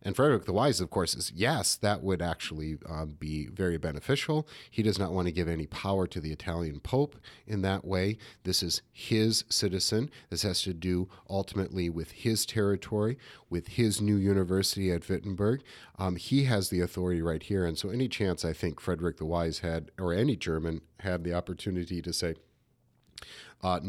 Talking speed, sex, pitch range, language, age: 185 wpm, male, 85-105 Hz, English, 40-59